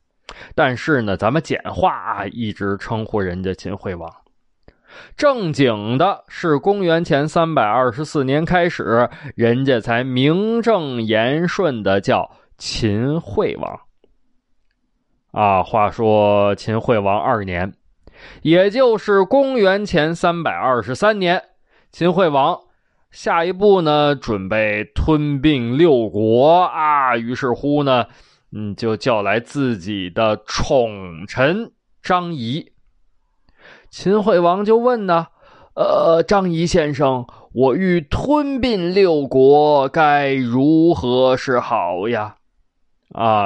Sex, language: male, Chinese